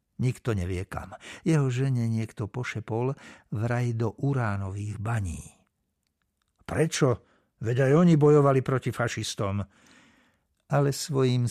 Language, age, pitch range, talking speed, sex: Slovak, 60-79, 110-150 Hz, 105 wpm, male